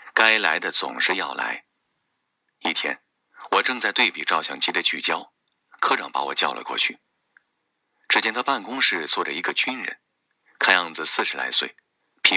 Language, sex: Chinese, male